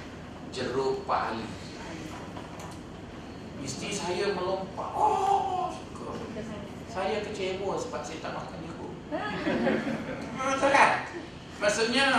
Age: 30-49